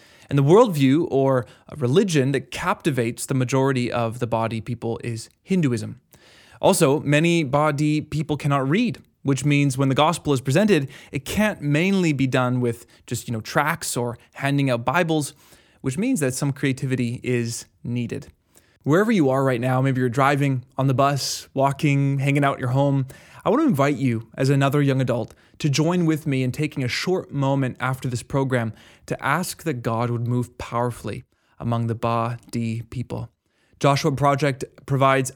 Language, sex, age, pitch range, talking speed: English, male, 20-39, 120-145 Hz, 170 wpm